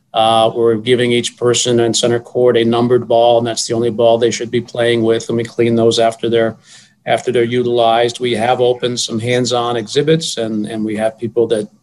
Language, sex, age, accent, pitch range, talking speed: English, male, 40-59, American, 115-130 Hz, 215 wpm